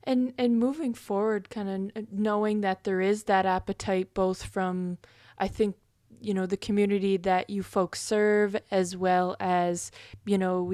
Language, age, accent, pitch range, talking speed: English, 20-39, American, 185-210 Hz, 170 wpm